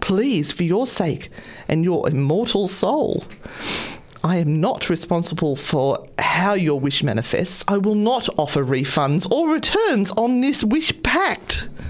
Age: 40-59